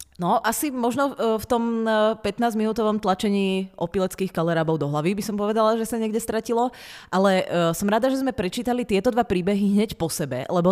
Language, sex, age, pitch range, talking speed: Czech, female, 30-49, 175-220 Hz, 180 wpm